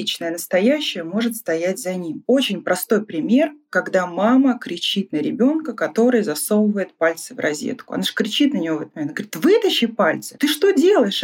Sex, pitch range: female, 195-245 Hz